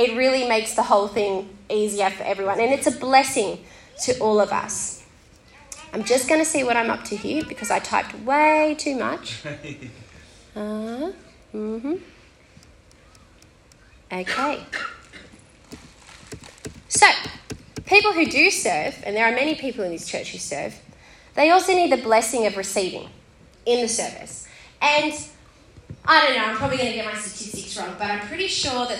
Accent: Australian